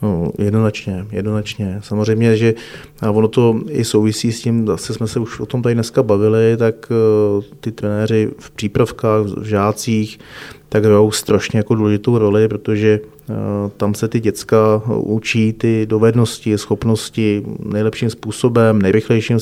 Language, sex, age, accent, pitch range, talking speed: Czech, male, 30-49, native, 105-115 Hz, 135 wpm